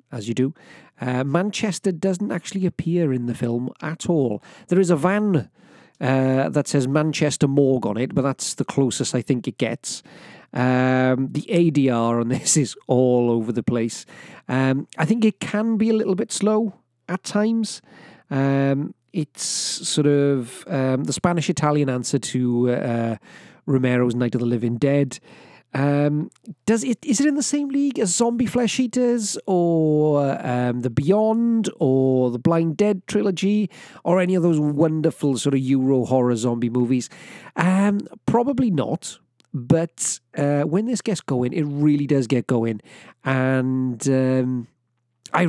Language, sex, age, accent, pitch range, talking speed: English, male, 40-59, British, 130-185 Hz, 160 wpm